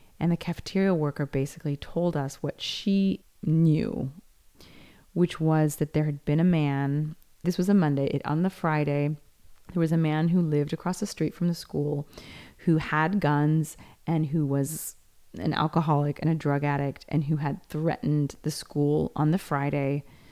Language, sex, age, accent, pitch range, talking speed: English, female, 30-49, American, 145-165 Hz, 170 wpm